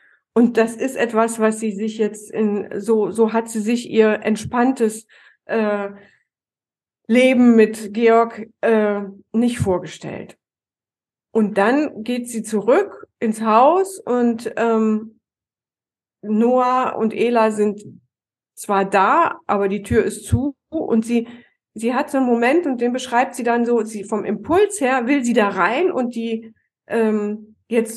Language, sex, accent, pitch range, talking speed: German, female, German, 215-260 Hz, 145 wpm